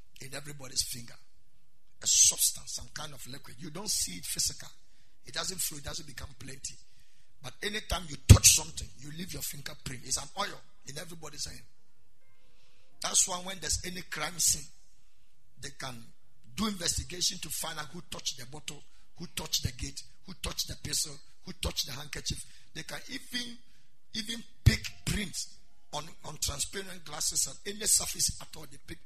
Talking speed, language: 170 wpm, English